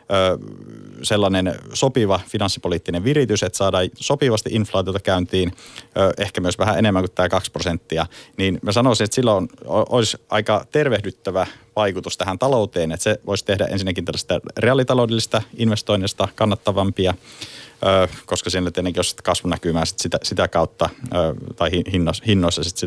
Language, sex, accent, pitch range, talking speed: Finnish, male, native, 85-105 Hz, 120 wpm